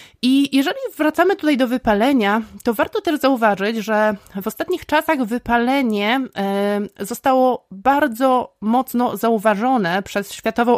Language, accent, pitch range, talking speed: Polish, native, 200-260 Hz, 115 wpm